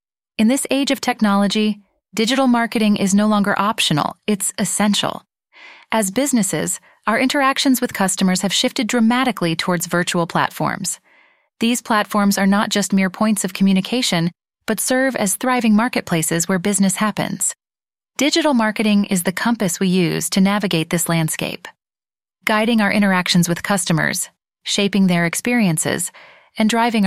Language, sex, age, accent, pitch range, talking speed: English, female, 30-49, American, 175-220 Hz, 140 wpm